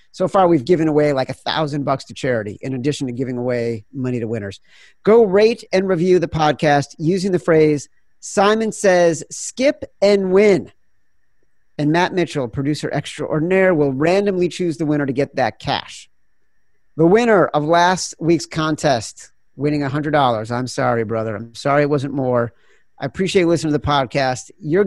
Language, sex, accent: English, male, American